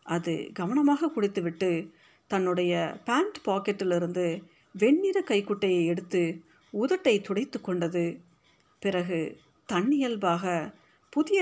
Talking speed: 80 wpm